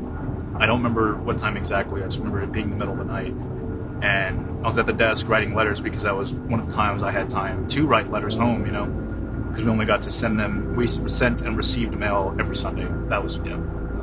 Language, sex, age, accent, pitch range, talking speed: English, male, 30-49, American, 95-115 Hz, 250 wpm